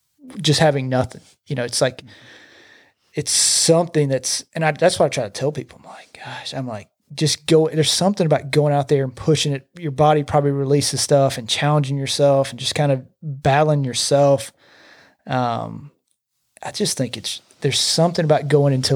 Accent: American